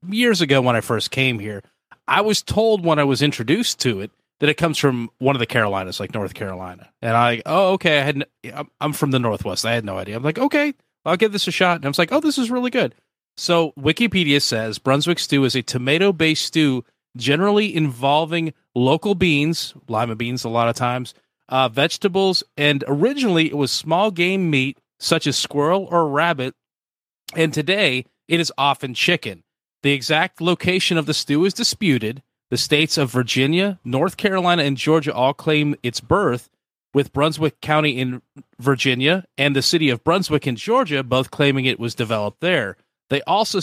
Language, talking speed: English, 190 wpm